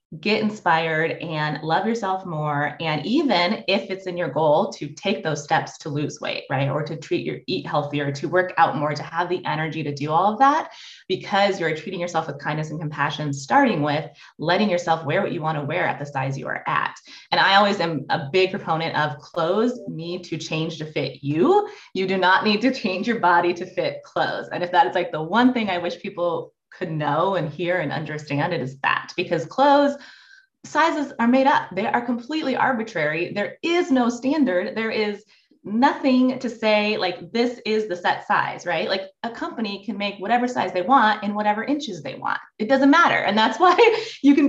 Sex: female